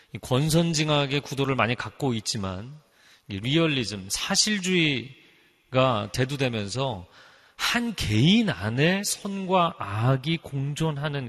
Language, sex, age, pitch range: Korean, male, 40-59, 115-165 Hz